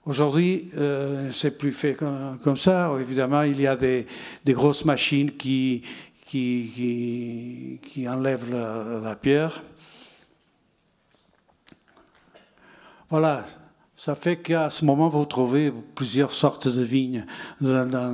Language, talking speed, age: French, 120 wpm, 60-79